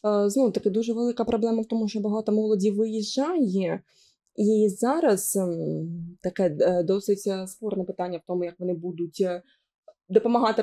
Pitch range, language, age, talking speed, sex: 200-245 Hz, Ukrainian, 20-39, 125 wpm, female